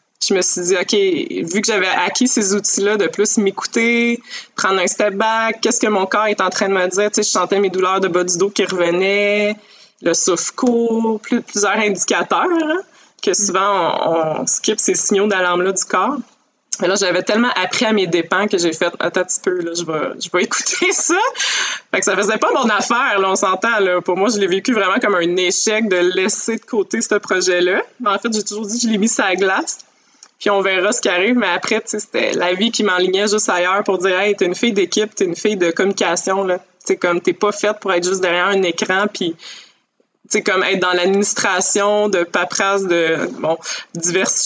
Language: French